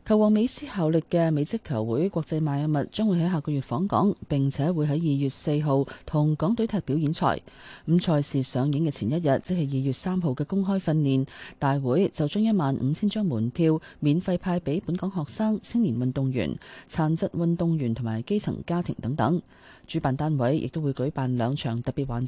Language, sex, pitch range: Chinese, female, 135-175 Hz